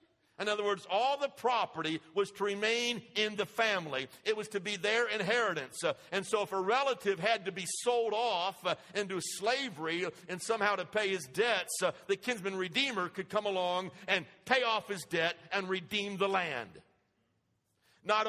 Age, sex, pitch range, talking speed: 60-79, male, 165-215 Hz, 170 wpm